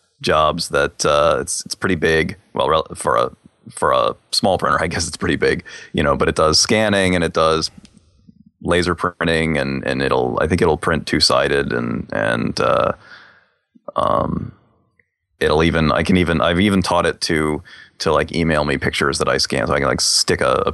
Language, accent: English, American